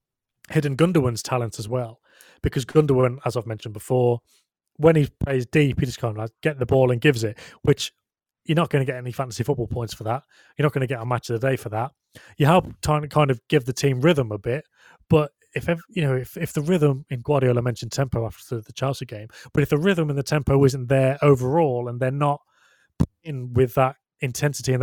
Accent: British